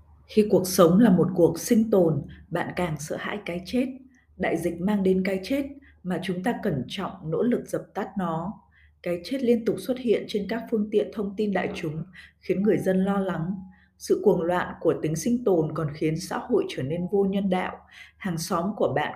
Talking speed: 215 wpm